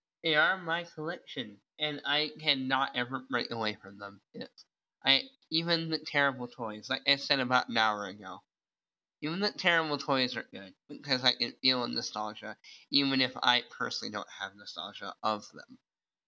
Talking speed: 170 wpm